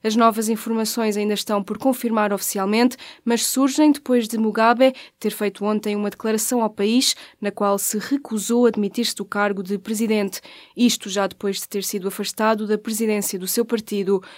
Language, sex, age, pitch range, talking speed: Portuguese, female, 20-39, 205-240 Hz, 175 wpm